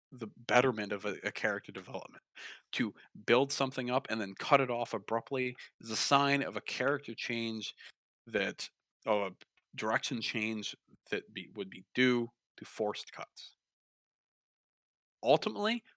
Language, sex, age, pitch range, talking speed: English, male, 30-49, 110-140 Hz, 135 wpm